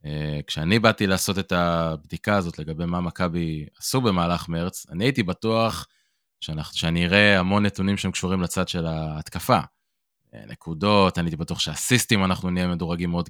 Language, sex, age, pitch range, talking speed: Hebrew, male, 20-39, 85-100 Hz, 165 wpm